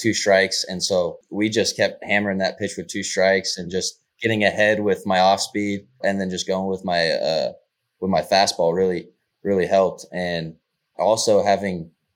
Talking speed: 185 wpm